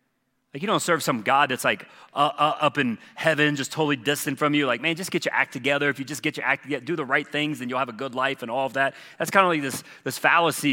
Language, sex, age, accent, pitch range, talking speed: English, male, 30-49, American, 115-160 Hz, 295 wpm